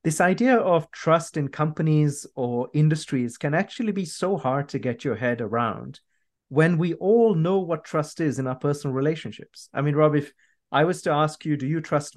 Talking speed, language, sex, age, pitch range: 200 wpm, English, male, 30-49, 130-165 Hz